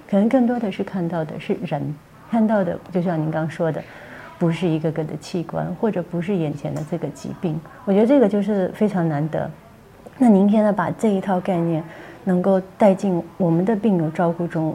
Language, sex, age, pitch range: Chinese, female, 30-49, 165-210 Hz